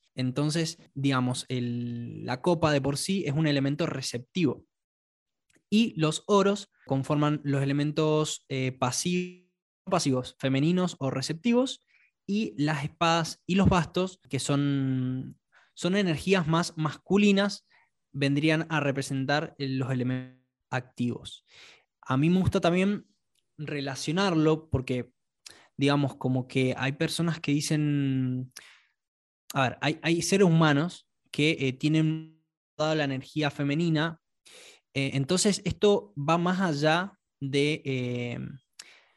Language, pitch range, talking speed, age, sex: Spanish, 135-170 Hz, 115 wpm, 20-39, male